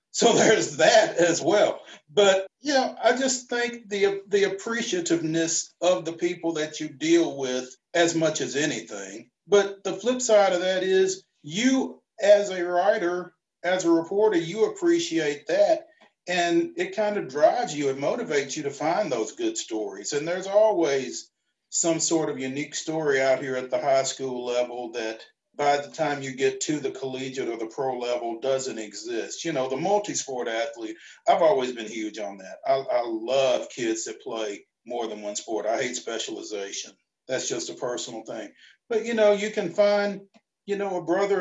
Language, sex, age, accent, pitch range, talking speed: English, male, 40-59, American, 145-205 Hz, 180 wpm